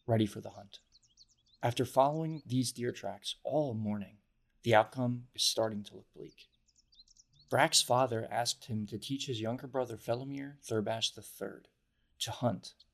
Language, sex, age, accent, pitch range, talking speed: English, male, 20-39, American, 110-125 Hz, 150 wpm